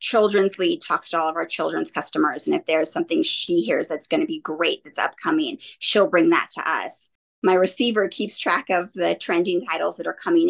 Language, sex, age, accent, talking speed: English, female, 20-39, American, 215 wpm